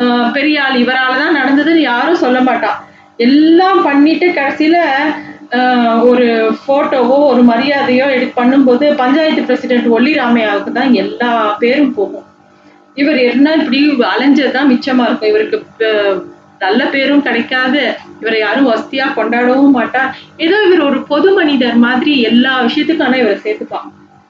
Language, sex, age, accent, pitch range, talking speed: Tamil, female, 30-49, native, 240-295 Hz, 120 wpm